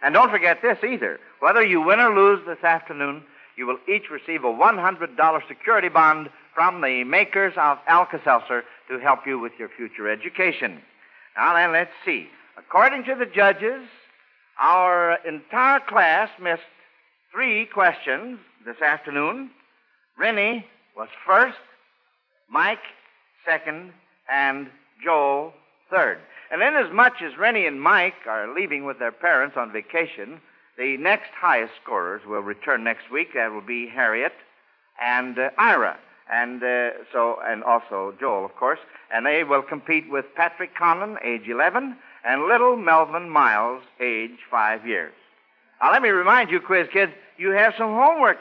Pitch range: 140-215 Hz